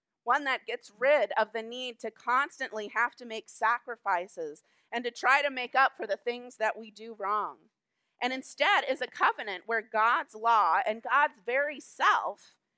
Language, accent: English, American